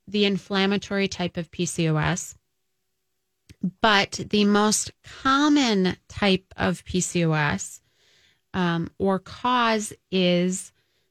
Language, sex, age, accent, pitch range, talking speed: English, female, 20-39, American, 175-205 Hz, 85 wpm